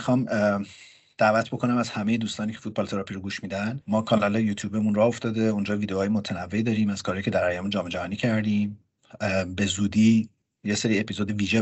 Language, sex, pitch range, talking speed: Persian, male, 100-115 Hz, 180 wpm